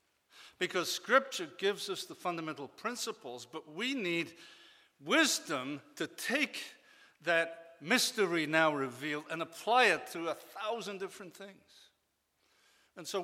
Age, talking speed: 60-79, 120 wpm